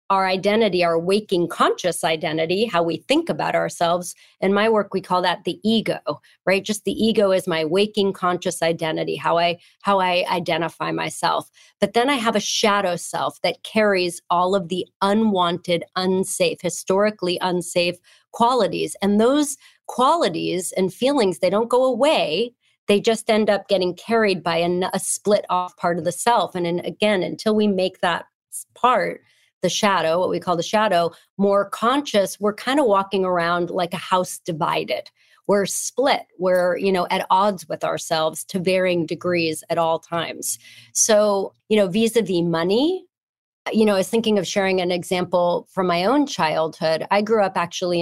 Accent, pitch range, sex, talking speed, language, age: American, 170-210 Hz, female, 170 wpm, English, 30-49